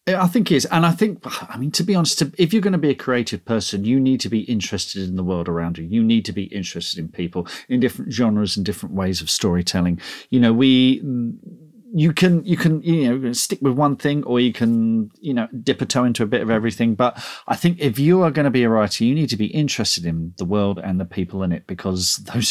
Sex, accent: male, British